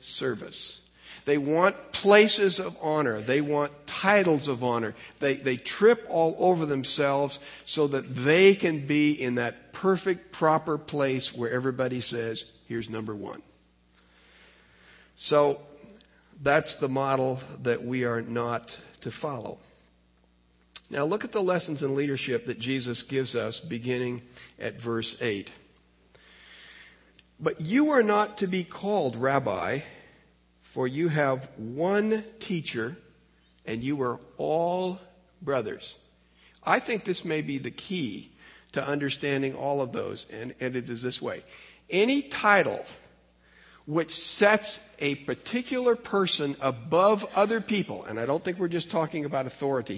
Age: 50-69